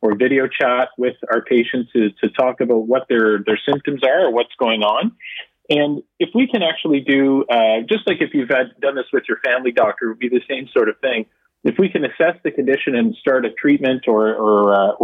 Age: 40-59